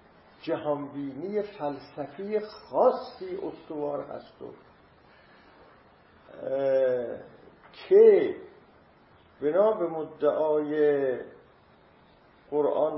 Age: 50-69